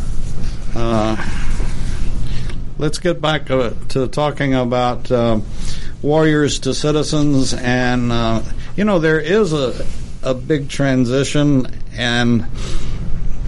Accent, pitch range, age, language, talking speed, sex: American, 115-135 Hz, 60-79, English, 105 wpm, male